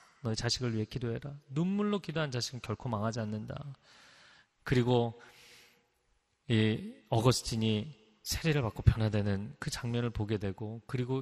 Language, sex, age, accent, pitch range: Korean, male, 30-49, native, 115-155 Hz